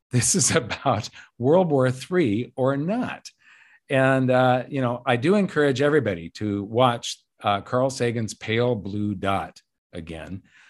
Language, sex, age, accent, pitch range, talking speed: English, male, 50-69, American, 105-140 Hz, 140 wpm